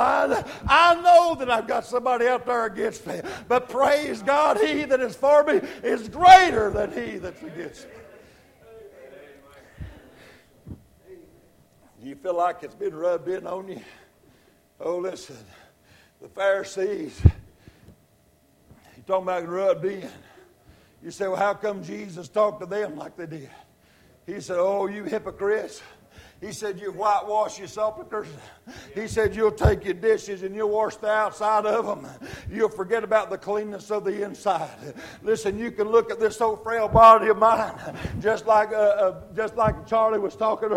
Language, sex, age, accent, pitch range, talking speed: English, male, 60-79, American, 200-230 Hz, 155 wpm